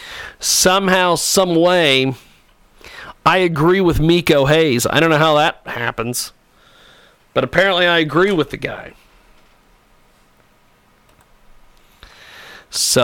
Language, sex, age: English, male, 40-59